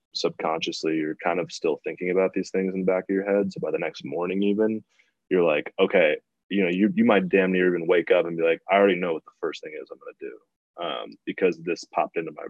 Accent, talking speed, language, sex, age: American, 260 wpm, English, male, 20-39